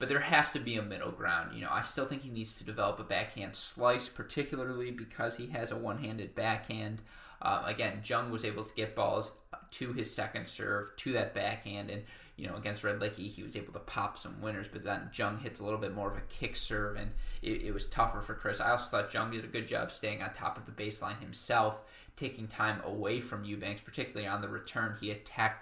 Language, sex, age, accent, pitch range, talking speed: English, male, 20-39, American, 105-120 Hz, 235 wpm